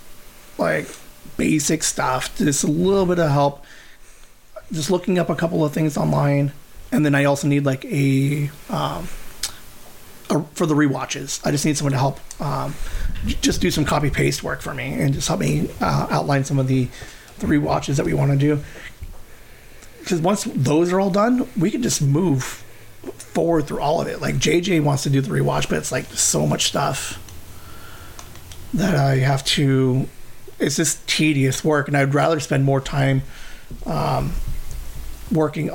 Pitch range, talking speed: 130-155 Hz, 175 wpm